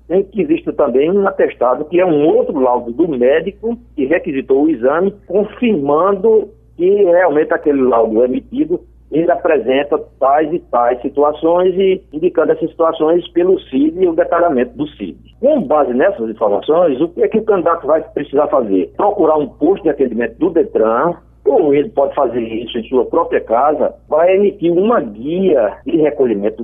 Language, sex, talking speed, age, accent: Portuguese, male, 170 wpm, 60-79, Brazilian